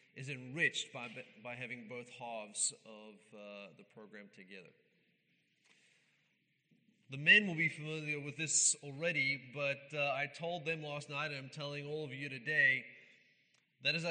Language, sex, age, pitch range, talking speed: English, male, 30-49, 140-170 Hz, 155 wpm